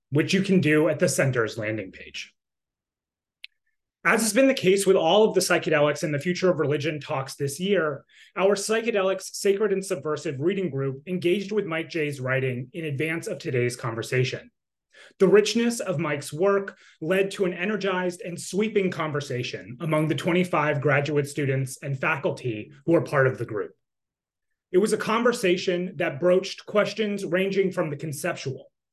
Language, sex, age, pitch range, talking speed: English, male, 30-49, 145-195 Hz, 165 wpm